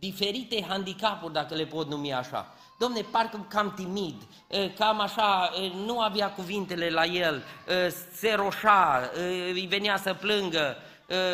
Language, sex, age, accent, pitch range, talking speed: Romanian, male, 20-39, native, 195-240 Hz, 125 wpm